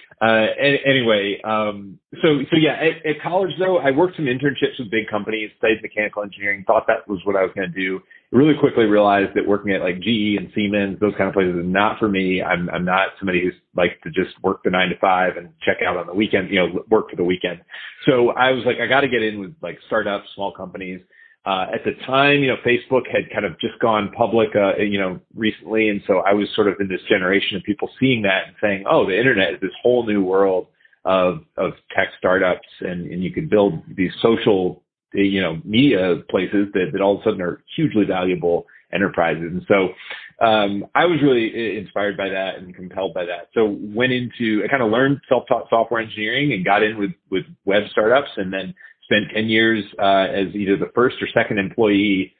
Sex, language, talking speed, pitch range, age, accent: male, English, 220 wpm, 95-120 Hz, 30-49, American